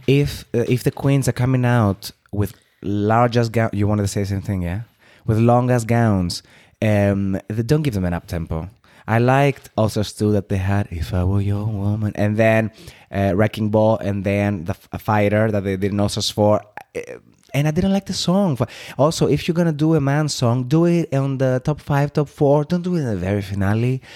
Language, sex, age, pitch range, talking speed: English, male, 20-39, 100-130 Hz, 220 wpm